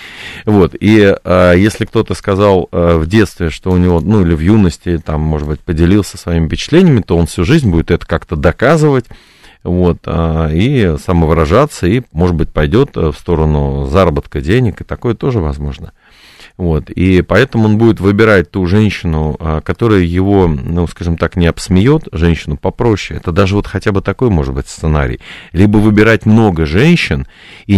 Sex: male